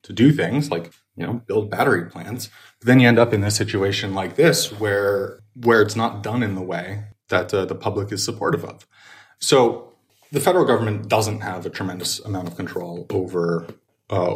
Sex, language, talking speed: male, English, 195 wpm